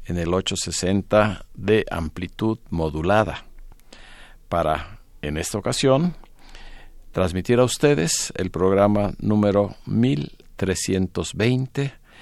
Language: Spanish